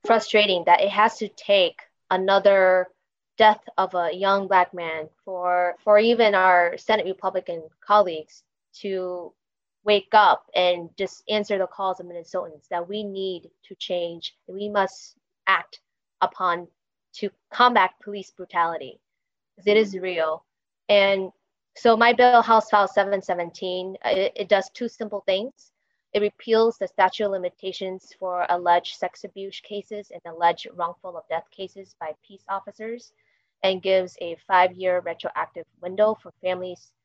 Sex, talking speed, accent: female, 145 wpm, American